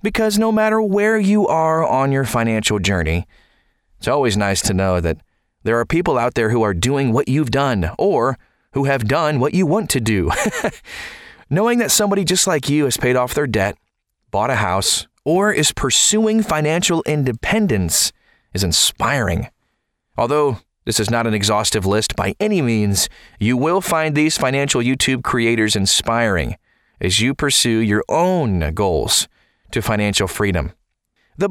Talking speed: 160 wpm